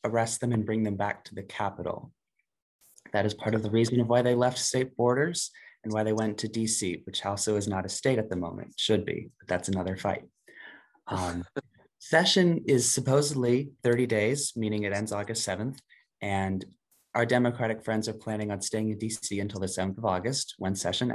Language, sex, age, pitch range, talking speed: English, male, 20-39, 100-120 Hz, 200 wpm